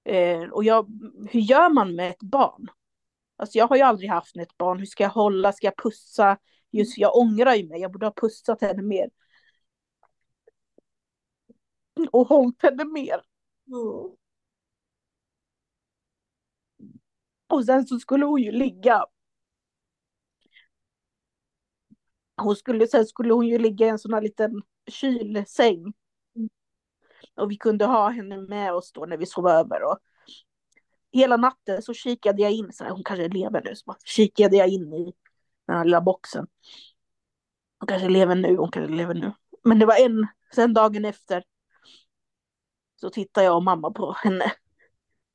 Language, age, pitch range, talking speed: Swedish, 30-49, 190-240 Hz, 155 wpm